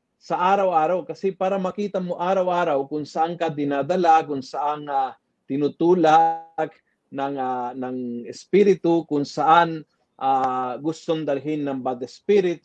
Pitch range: 145-185 Hz